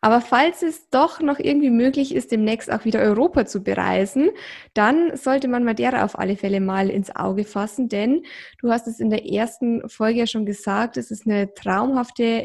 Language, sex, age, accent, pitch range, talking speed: German, female, 20-39, German, 200-255 Hz, 195 wpm